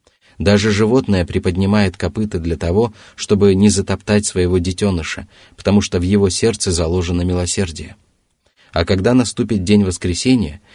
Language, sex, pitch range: Russian, male, 90-110 Hz